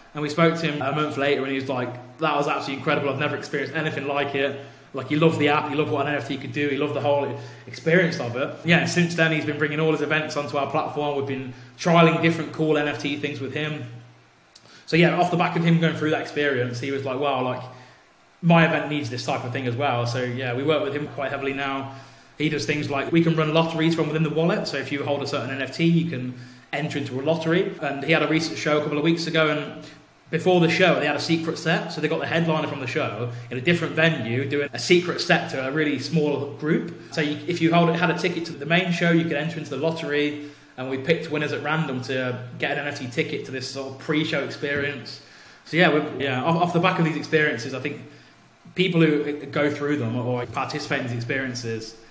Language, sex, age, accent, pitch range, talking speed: English, male, 20-39, British, 135-160 Hz, 250 wpm